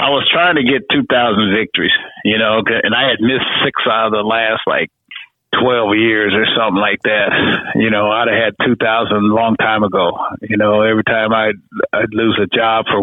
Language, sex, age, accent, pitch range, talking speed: English, male, 50-69, American, 110-120 Hz, 205 wpm